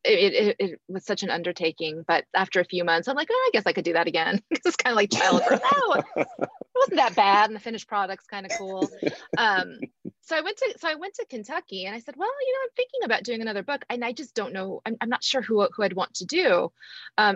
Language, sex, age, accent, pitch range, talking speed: English, female, 30-49, American, 180-295 Hz, 265 wpm